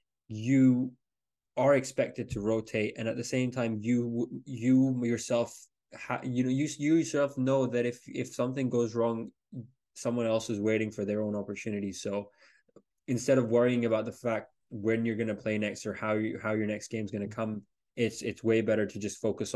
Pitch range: 105-120 Hz